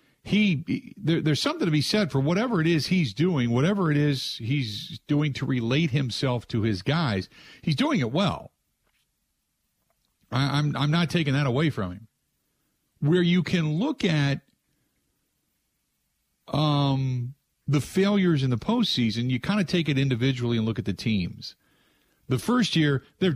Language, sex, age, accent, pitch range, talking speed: English, male, 50-69, American, 115-165 Hz, 160 wpm